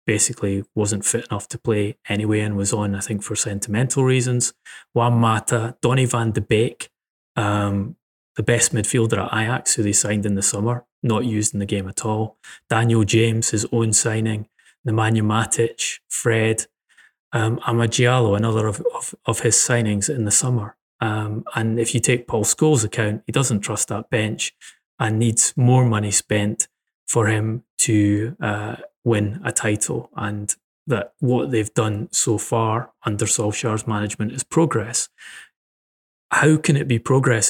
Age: 20-39